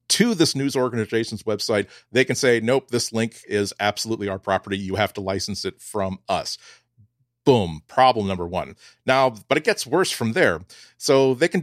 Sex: male